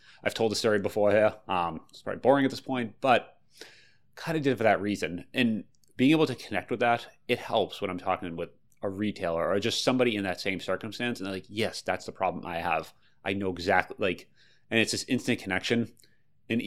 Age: 30-49